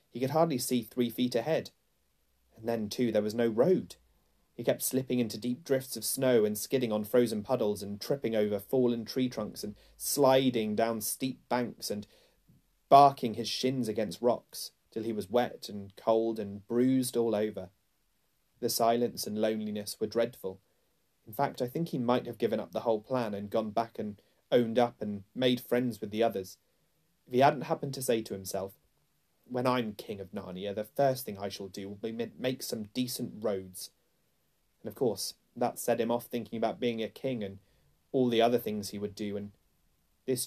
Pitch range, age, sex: 100-125 Hz, 30-49, male